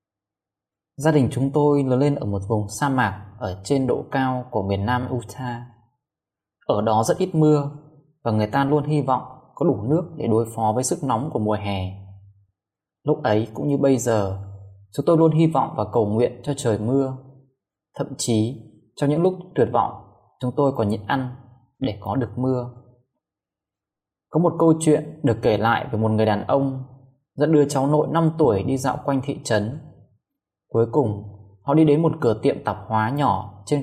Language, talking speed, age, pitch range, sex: Vietnamese, 195 wpm, 20-39, 110-145 Hz, male